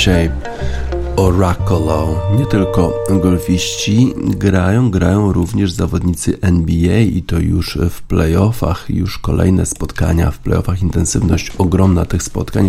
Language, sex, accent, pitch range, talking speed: Polish, male, native, 85-100 Hz, 115 wpm